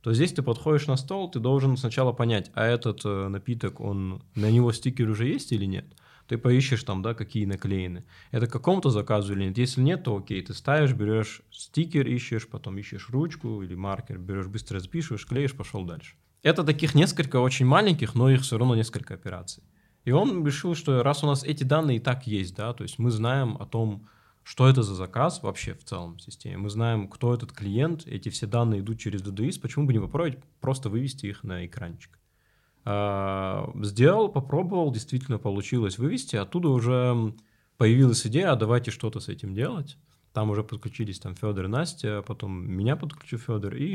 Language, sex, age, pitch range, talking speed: Russian, male, 20-39, 105-135 Hz, 185 wpm